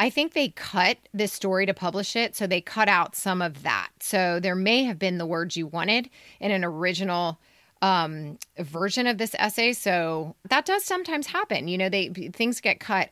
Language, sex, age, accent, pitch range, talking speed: English, female, 30-49, American, 175-235 Hz, 200 wpm